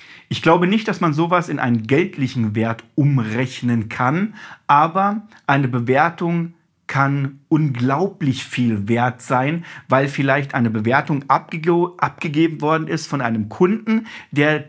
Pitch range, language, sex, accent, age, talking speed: 125-170 Hz, German, male, German, 50-69, 125 wpm